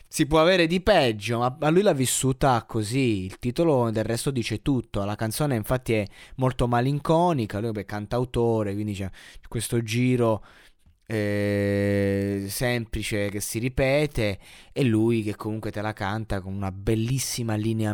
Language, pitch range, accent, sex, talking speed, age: Italian, 105-135 Hz, native, male, 150 wpm, 20-39